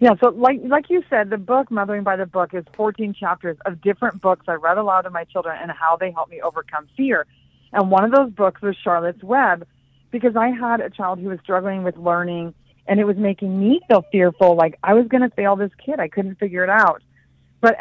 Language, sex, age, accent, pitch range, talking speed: English, female, 40-59, American, 185-240 Hz, 235 wpm